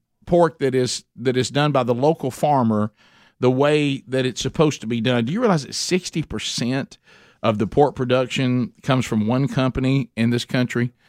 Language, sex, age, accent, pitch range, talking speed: English, male, 50-69, American, 120-150 Hz, 190 wpm